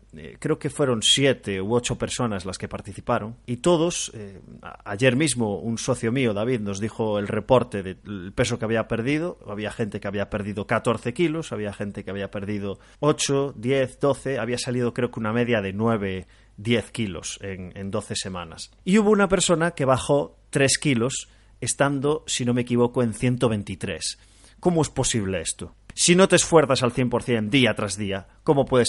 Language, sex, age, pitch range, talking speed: Spanish, male, 30-49, 105-130 Hz, 185 wpm